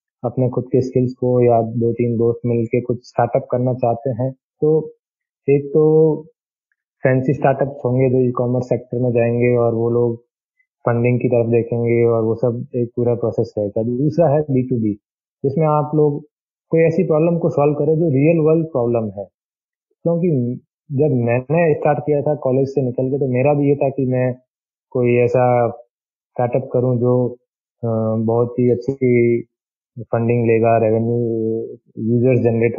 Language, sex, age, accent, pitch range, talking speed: Hindi, male, 20-39, native, 120-150 Hz, 165 wpm